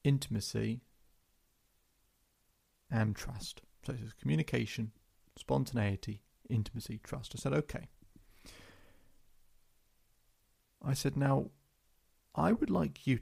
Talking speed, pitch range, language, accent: 90 wpm, 100-120 Hz, English, British